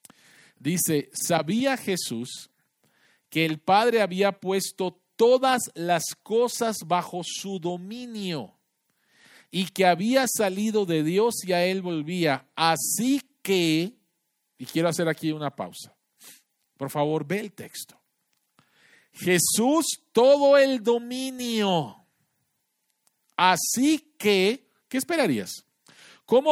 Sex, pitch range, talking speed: male, 160-235 Hz, 100 wpm